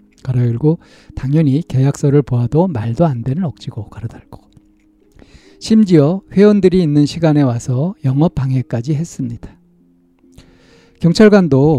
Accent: native